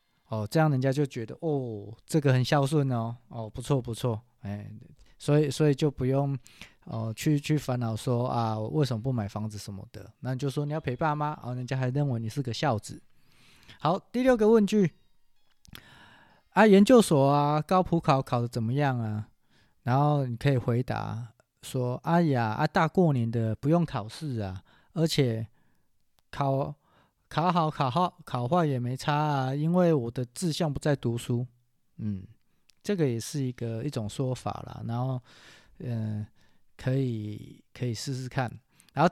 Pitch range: 115-150 Hz